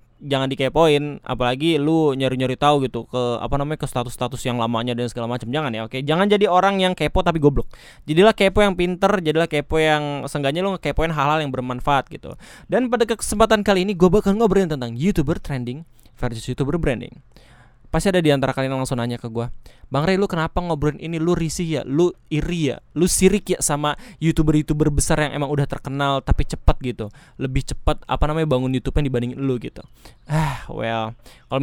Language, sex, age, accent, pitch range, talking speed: Indonesian, male, 20-39, native, 130-165 Hz, 190 wpm